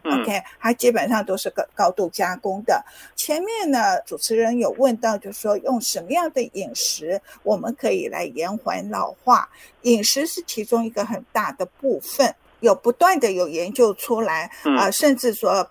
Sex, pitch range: female, 210-295 Hz